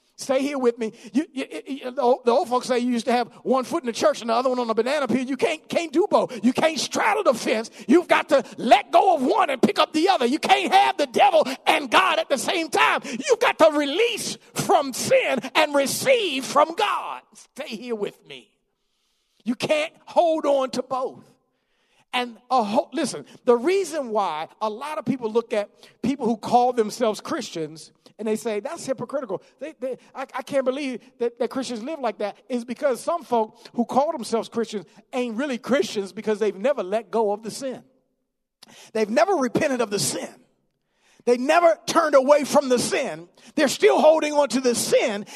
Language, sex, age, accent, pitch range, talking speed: English, male, 50-69, American, 220-295 Hz, 210 wpm